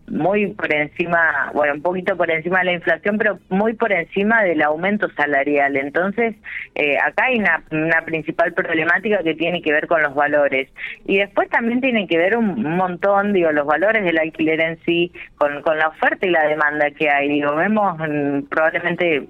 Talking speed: 185 wpm